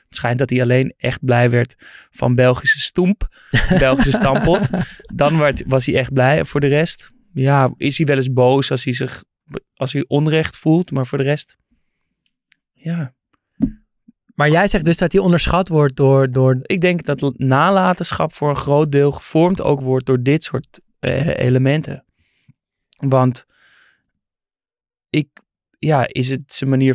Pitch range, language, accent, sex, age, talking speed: 130-155 Hz, Dutch, Dutch, male, 20-39, 165 wpm